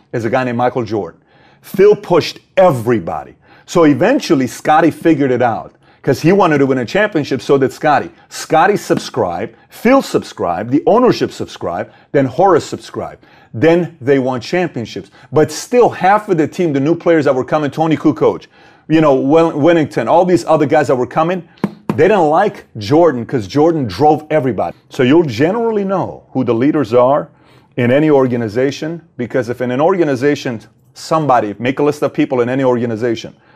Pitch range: 125-160 Hz